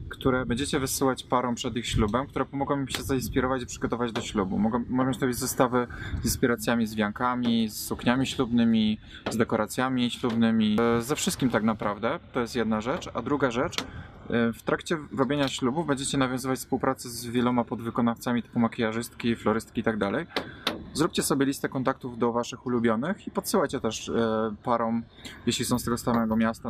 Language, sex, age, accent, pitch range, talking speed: Polish, male, 20-39, native, 105-130 Hz, 165 wpm